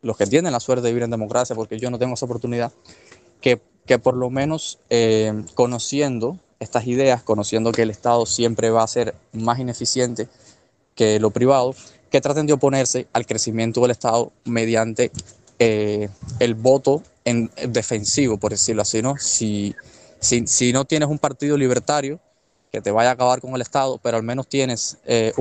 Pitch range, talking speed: 115-135 Hz, 180 wpm